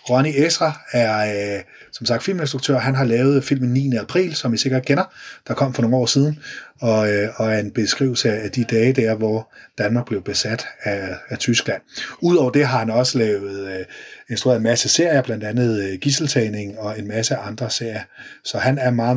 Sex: male